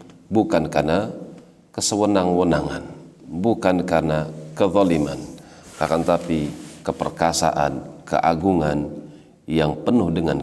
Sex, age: male, 40-59